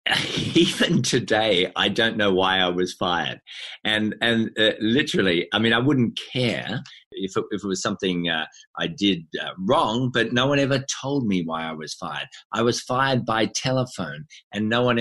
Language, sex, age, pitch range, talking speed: English, male, 50-69, 100-125 Hz, 190 wpm